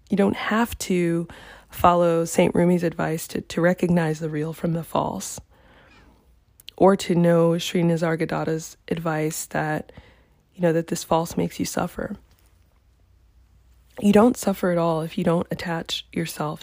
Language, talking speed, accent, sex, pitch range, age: English, 145 wpm, American, female, 165-190 Hz, 20-39